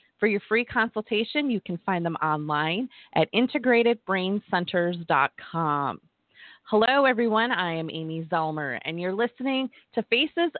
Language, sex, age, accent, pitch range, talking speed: English, female, 30-49, American, 170-230 Hz, 125 wpm